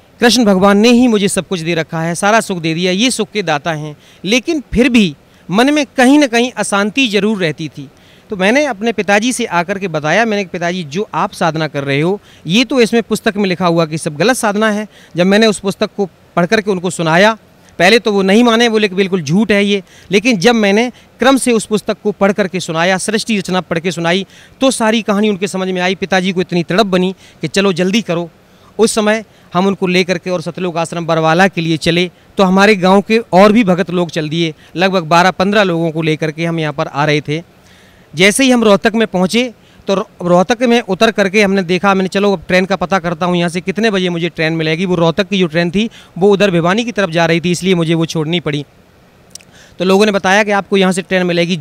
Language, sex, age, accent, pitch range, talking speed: Hindi, male, 40-59, native, 170-215 Hz, 240 wpm